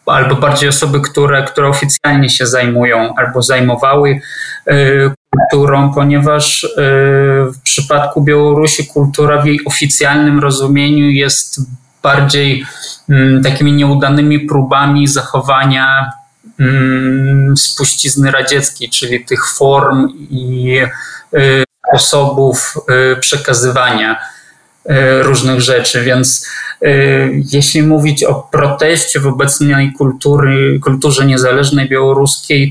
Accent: native